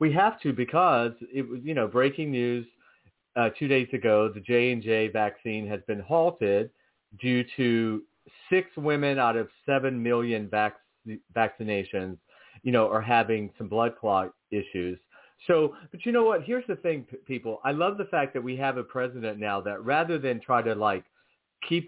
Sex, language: male, English